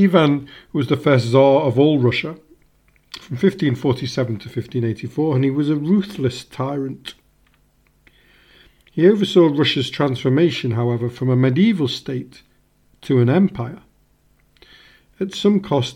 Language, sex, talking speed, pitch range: English, male, 125 wpm, 125-180 Hz